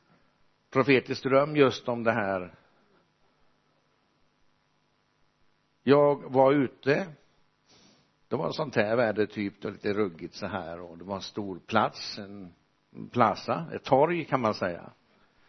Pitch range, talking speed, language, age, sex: 105-135 Hz, 130 wpm, Swedish, 60-79, male